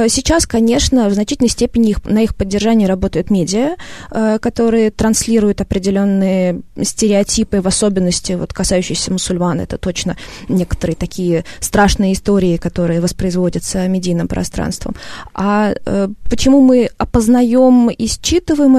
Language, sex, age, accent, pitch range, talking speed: Russian, female, 20-39, native, 190-240 Hz, 110 wpm